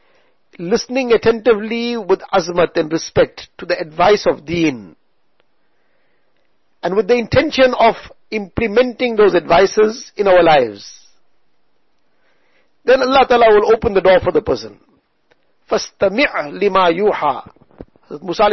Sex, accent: male, Indian